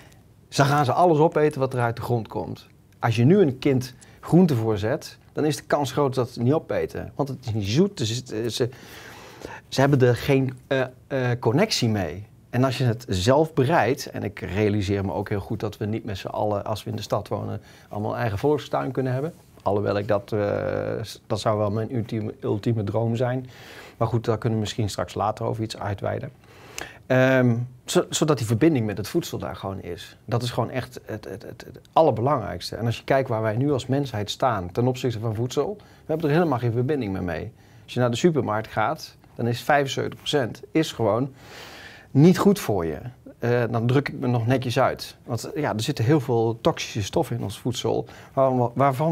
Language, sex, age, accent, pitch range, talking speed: Dutch, male, 40-59, Dutch, 110-140 Hz, 210 wpm